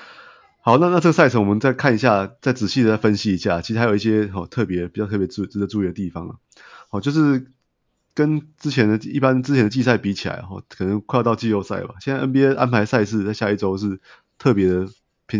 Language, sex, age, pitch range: Chinese, male, 30-49, 95-120 Hz